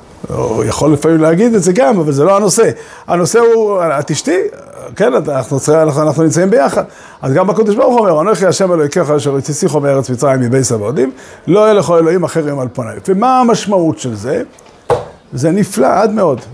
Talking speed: 165 wpm